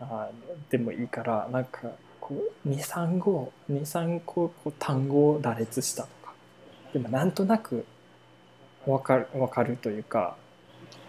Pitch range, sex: 120-160 Hz, male